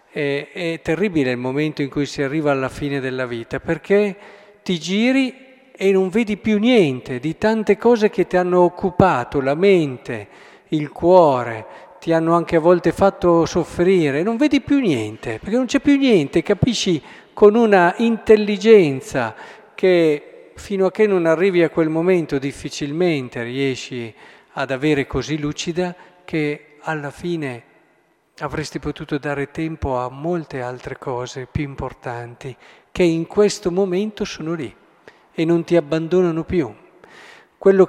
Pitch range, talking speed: 145-195 Hz, 145 wpm